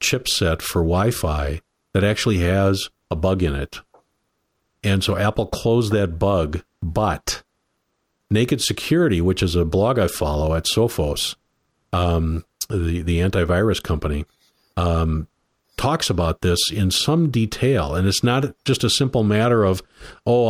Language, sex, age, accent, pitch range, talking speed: English, male, 50-69, American, 90-110 Hz, 140 wpm